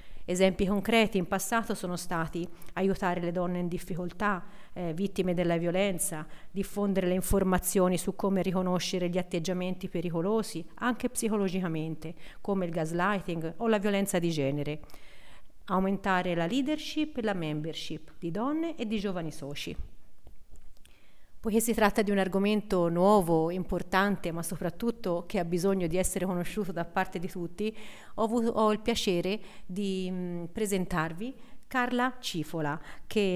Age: 40-59